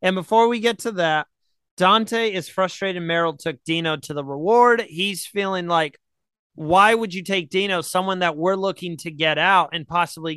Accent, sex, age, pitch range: American, male, 30-49, 155-190 Hz